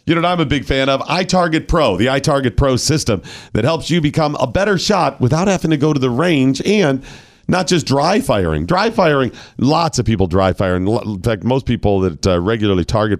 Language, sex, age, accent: English, male, 40-59, American